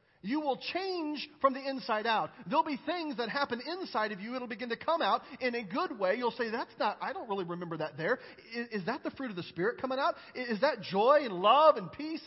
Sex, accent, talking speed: male, American, 265 wpm